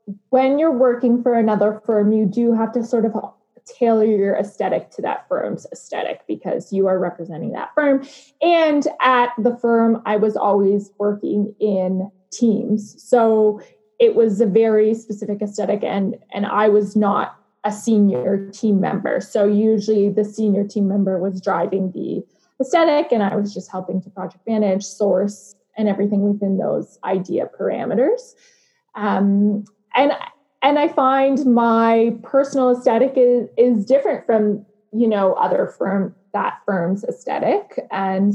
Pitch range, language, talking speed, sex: 200-235 Hz, English, 150 wpm, female